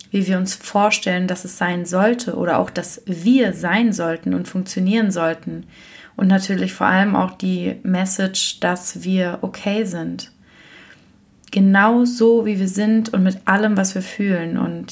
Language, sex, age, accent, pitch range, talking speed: German, female, 20-39, German, 185-205 Hz, 160 wpm